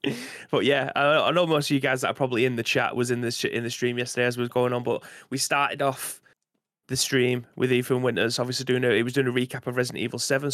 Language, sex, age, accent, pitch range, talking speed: English, male, 20-39, British, 125-135 Hz, 270 wpm